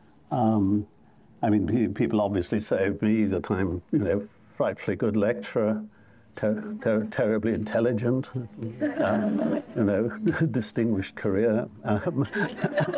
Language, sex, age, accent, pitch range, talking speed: English, male, 60-79, British, 100-115 Hz, 110 wpm